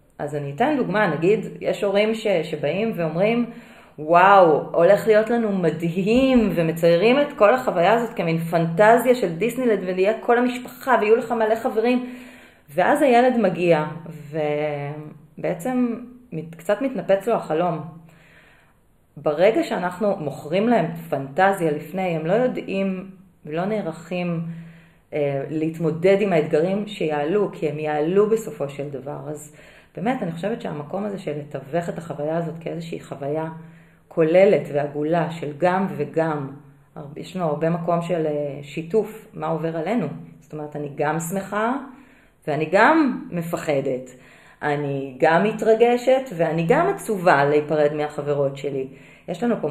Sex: female